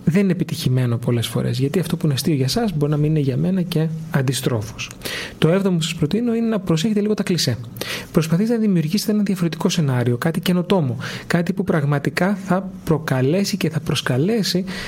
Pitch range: 150-195 Hz